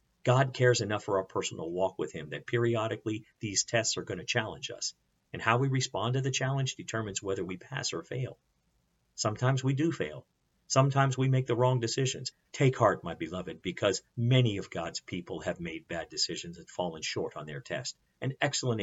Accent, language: American, English